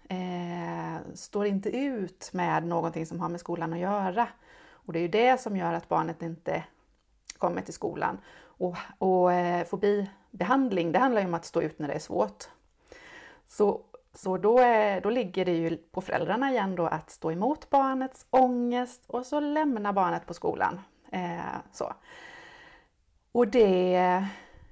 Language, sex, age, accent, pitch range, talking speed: Swedish, female, 30-49, native, 170-230 Hz, 165 wpm